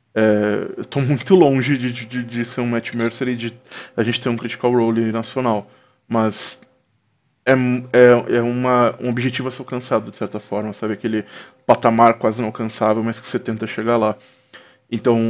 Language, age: Portuguese, 20-39